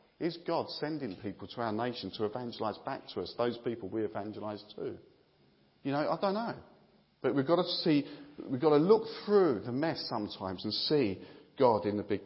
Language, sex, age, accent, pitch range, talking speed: English, male, 40-59, British, 105-145 Hz, 200 wpm